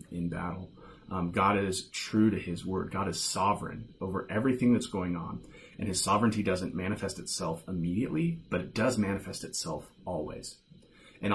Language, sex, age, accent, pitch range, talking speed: English, male, 30-49, American, 90-120 Hz, 165 wpm